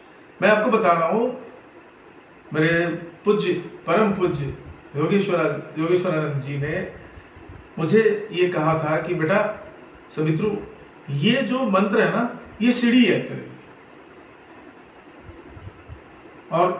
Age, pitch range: 50-69, 160-230 Hz